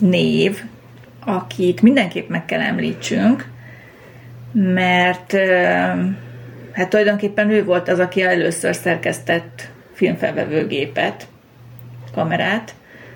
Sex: female